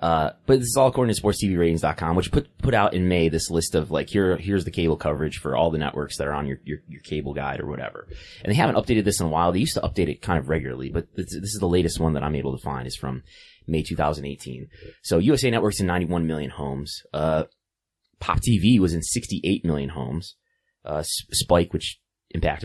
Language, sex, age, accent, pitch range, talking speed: English, male, 20-39, American, 75-95 Hz, 235 wpm